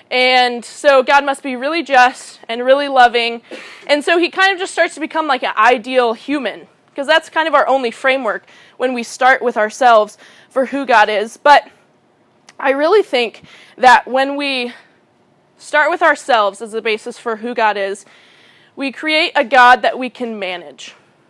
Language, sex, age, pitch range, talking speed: English, female, 20-39, 235-290 Hz, 180 wpm